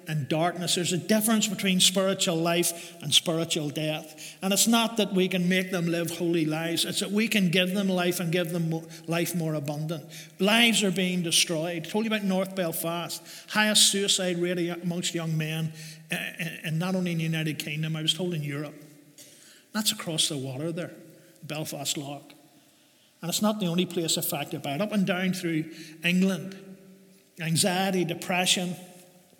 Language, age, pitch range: English, 50-69, 165-190 Hz